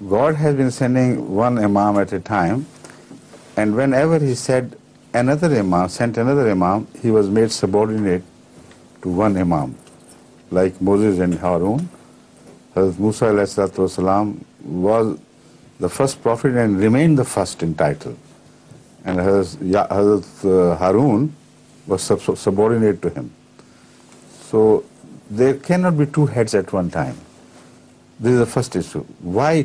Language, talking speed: Bengali, 125 wpm